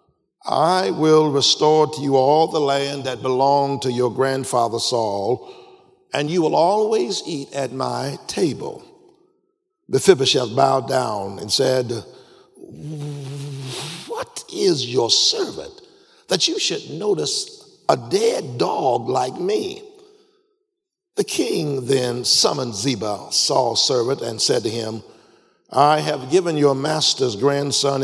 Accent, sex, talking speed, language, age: American, male, 120 wpm, English, 60-79